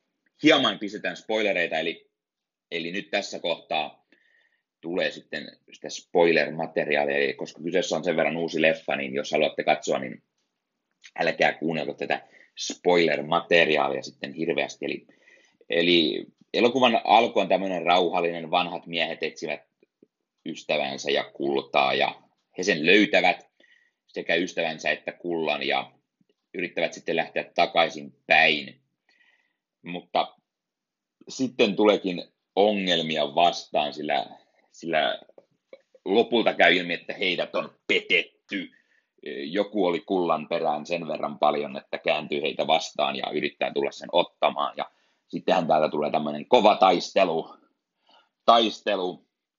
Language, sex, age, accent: Finnish, male, 30-49, native